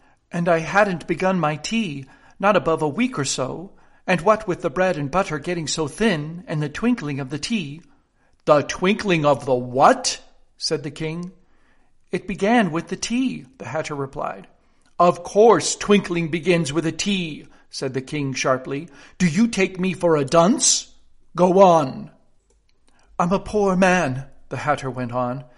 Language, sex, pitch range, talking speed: English, male, 140-185 Hz, 170 wpm